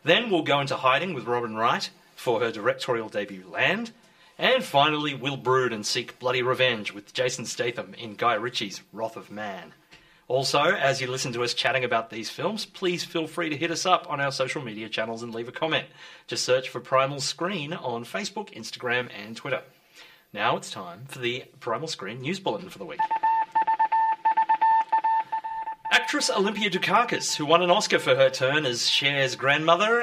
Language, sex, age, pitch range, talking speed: English, male, 30-49, 130-175 Hz, 180 wpm